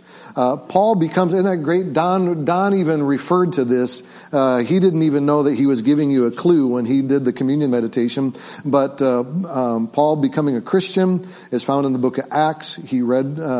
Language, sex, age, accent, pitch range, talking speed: English, male, 50-69, American, 125-160 Hz, 205 wpm